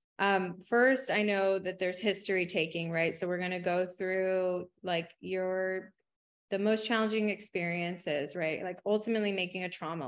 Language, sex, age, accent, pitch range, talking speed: English, female, 20-39, American, 180-210 Hz, 160 wpm